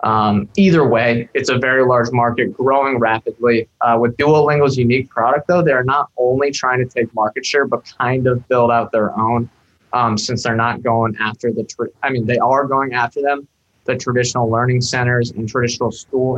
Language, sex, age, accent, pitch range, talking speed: English, male, 20-39, American, 120-140 Hz, 195 wpm